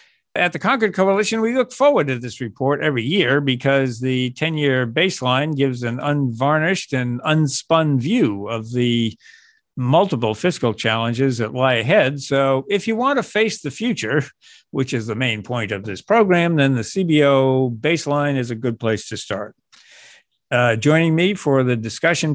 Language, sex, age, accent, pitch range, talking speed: English, male, 50-69, American, 120-165 Hz, 165 wpm